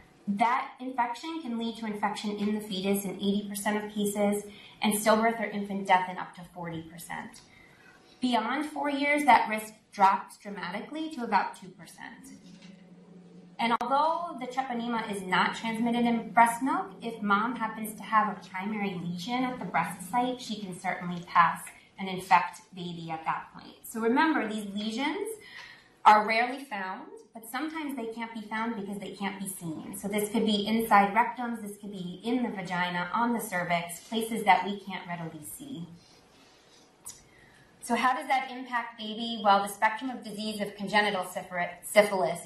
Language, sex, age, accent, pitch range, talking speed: English, female, 20-39, American, 190-235 Hz, 165 wpm